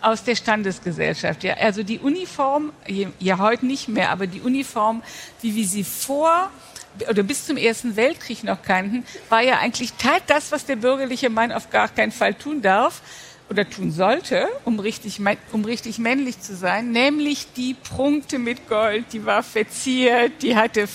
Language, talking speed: German, 170 wpm